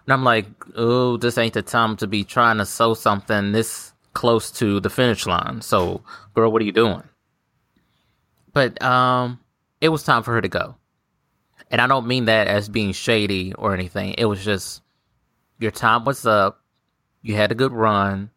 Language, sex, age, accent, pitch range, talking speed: English, male, 20-39, American, 100-125 Hz, 185 wpm